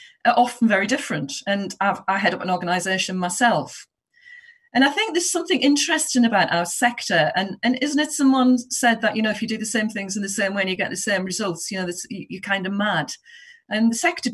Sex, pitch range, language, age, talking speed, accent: female, 185-260 Hz, English, 40-59, 225 wpm, British